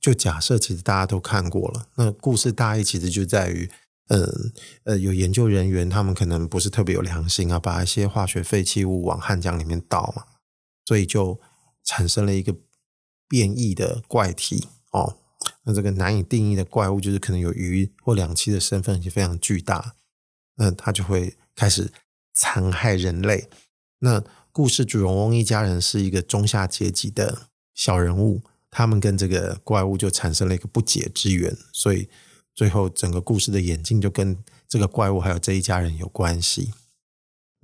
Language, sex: Chinese, male